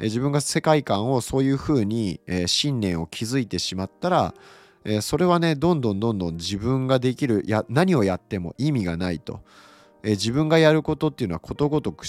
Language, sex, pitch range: Japanese, male, 90-140 Hz